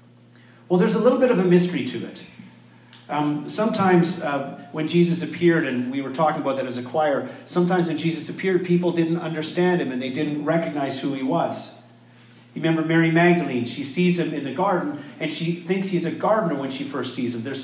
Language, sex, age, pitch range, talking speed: English, male, 40-59, 145-180 Hz, 210 wpm